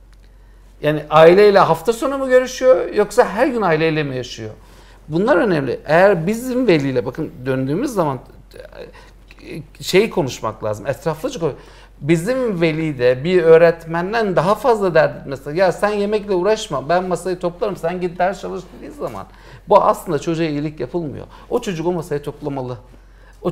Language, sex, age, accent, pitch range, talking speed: Turkish, male, 60-79, native, 135-190 Hz, 145 wpm